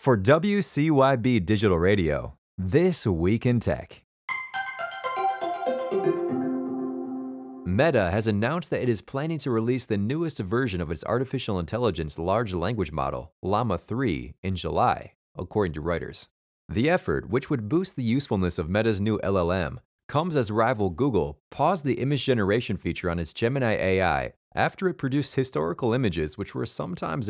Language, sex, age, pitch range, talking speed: English, male, 30-49, 95-135 Hz, 145 wpm